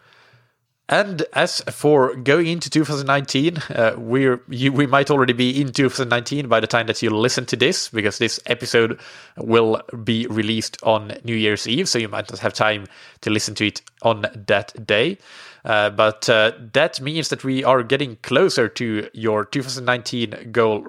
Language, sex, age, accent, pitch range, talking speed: English, male, 20-39, Norwegian, 110-140 Hz, 170 wpm